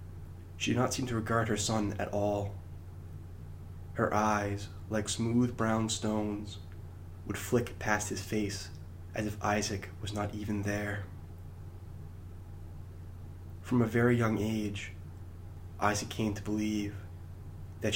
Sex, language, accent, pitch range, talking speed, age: male, English, American, 100-110 Hz, 125 wpm, 20-39